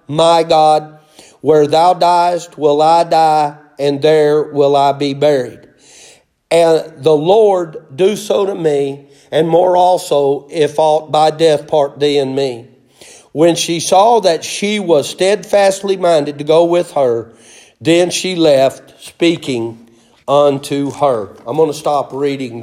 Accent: American